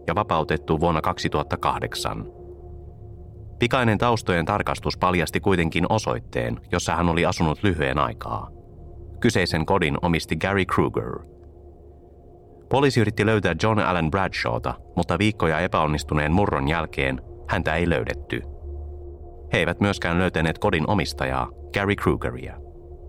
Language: Finnish